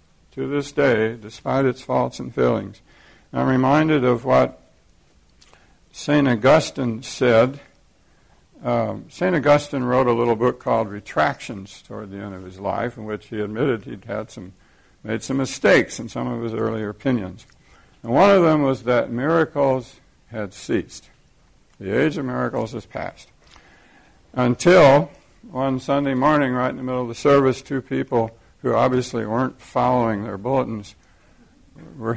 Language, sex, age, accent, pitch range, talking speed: English, male, 60-79, American, 110-140 Hz, 145 wpm